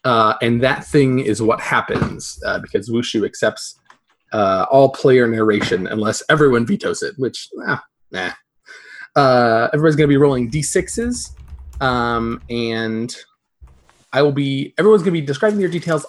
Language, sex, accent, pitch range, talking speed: English, male, American, 120-155 Hz, 155 wpm